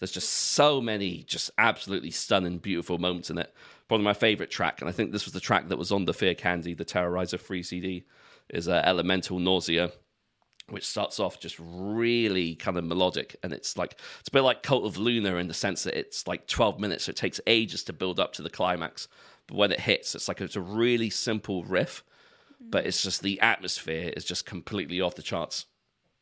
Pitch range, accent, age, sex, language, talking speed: 90-105 Hz, British, 40-59, male, English, 215 wpm